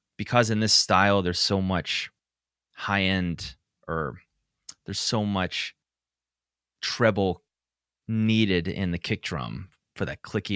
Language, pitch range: English, 85-105 Hz